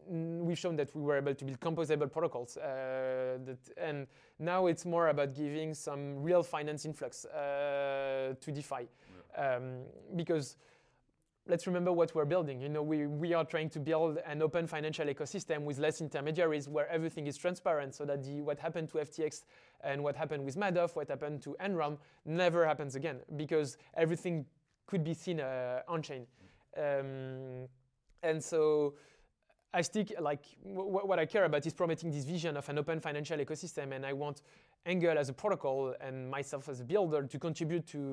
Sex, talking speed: male, 175 wpm